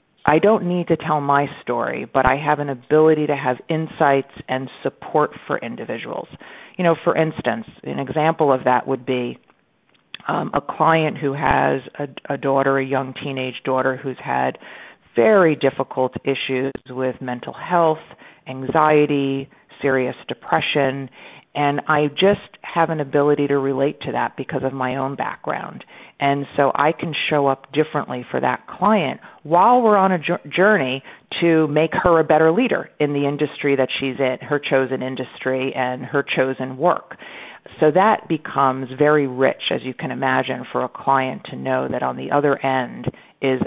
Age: 50-69